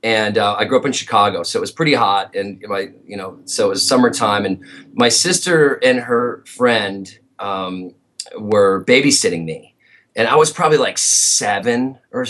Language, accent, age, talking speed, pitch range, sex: English, American, 30-49, 180 wpm, 115-155 Hz, male